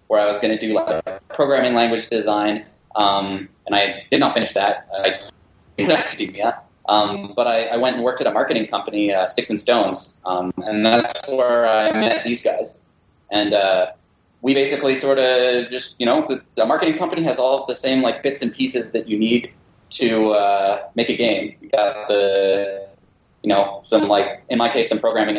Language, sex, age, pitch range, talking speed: English, male, 10-29, 105-125 Hz, 200 wpm